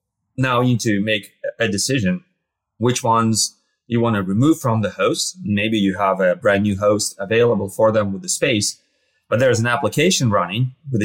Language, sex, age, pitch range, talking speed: English, male, 30-49, 100-120 Hz, 195 wpm